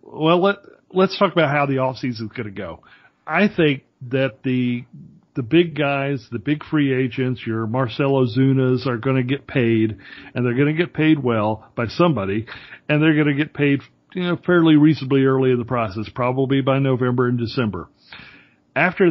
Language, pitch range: English, 120-150 Hz